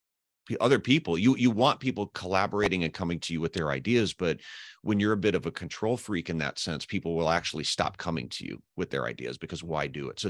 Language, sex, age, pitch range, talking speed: English, male, 40-59, 80-100 Hz, 240 wpm